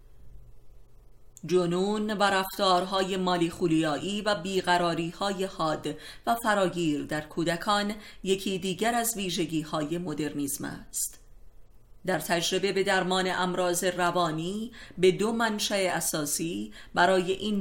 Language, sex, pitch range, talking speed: Persian, female, 155-195 Hz, 100 wpm